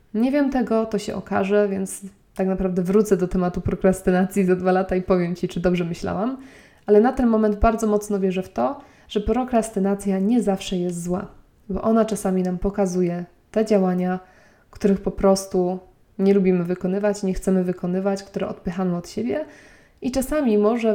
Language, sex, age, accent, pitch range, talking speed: Polish, female, 20-39, native, 185-210 Hz, 170 wpm